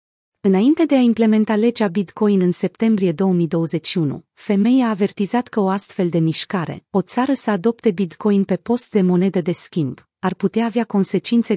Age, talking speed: 30-49, 165 wpm